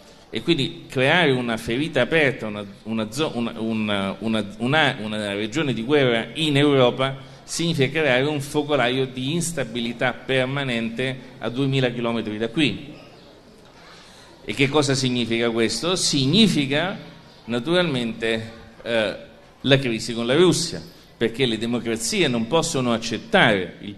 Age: 40-59